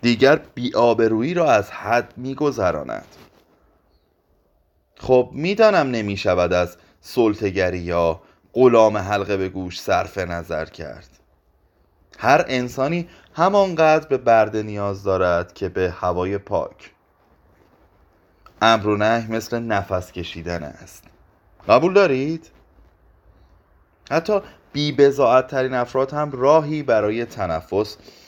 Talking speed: 100 wpm